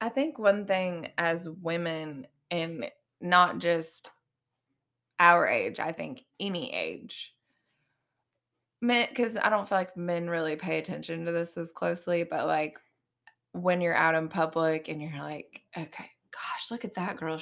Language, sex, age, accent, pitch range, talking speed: English, female, 20-39, American, 160-195 Hz, 155 wpm